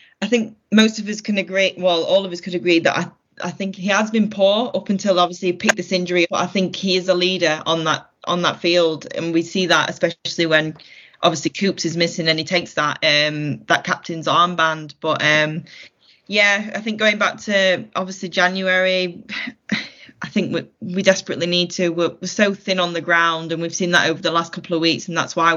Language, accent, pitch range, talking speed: English, British, 165-190 Hz, 225 wpm